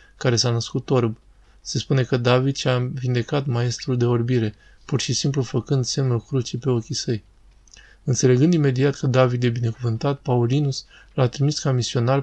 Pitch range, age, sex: 120-135 Hz, 20-39, male